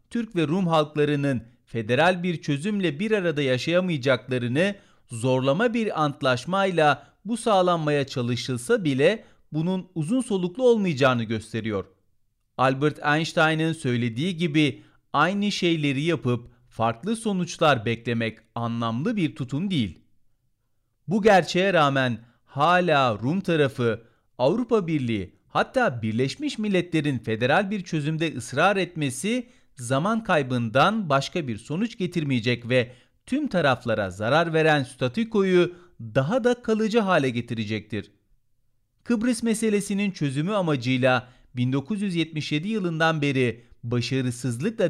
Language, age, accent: Turkish, 40-59, native